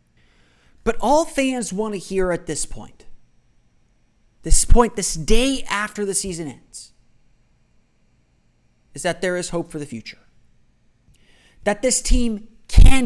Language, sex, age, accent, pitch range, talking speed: English, male, 30-49, American, 150-225 Hz, 135 wpm